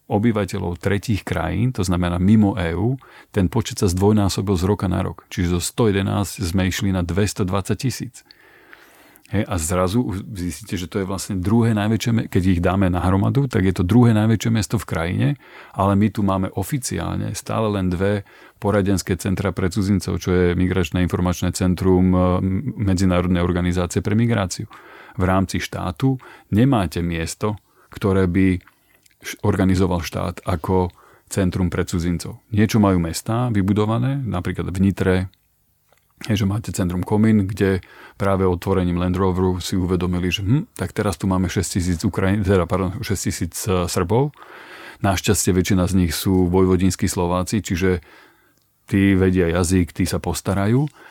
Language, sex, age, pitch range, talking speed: Slovak, male, 40-59, 90-105 Hz, 140 wpm